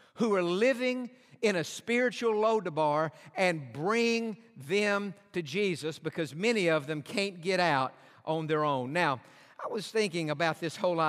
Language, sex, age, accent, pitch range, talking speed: English, male, 50-69, American, 170-235 Hz, 155 wpm